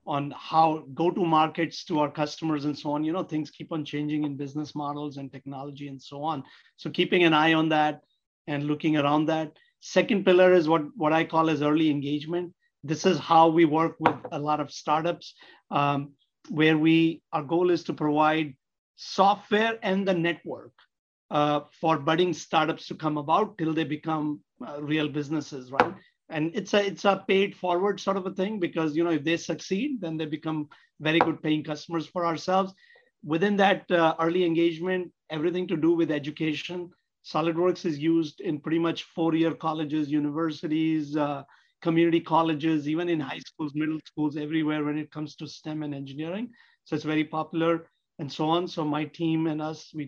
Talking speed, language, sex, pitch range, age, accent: 185 wpm, English, male, 150-175 Hz, 50-69, Indian